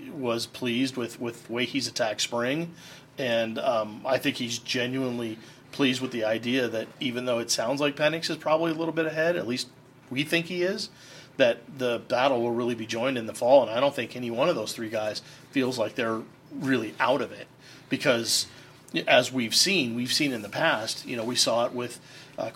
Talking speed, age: 215 wpm, 40-59